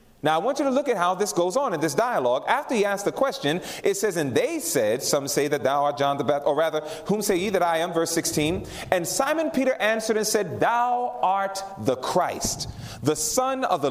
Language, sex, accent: English, male, American